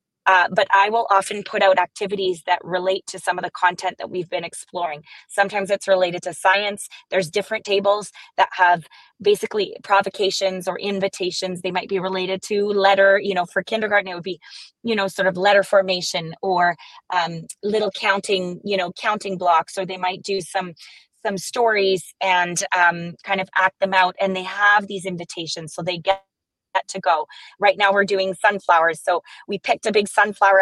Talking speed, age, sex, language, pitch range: 190 wpm, 20-39, female, English, 180-200 Hz